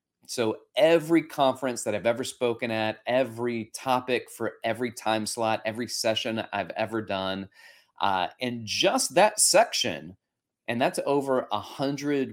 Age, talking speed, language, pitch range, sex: 30-49, 135 wpm, English, 110-140 Hz, male